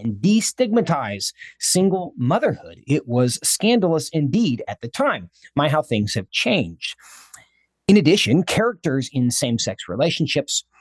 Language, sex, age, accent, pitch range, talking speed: English, male, 40-59, American, 120-200 Hz, 130 wpm